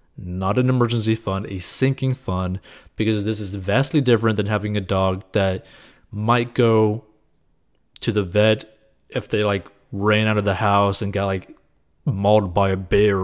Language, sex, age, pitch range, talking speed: English, male, 30-49, 95-115 Hz, 170 wpm